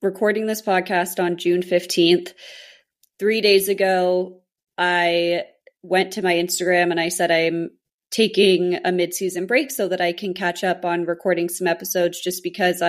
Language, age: English, 20-39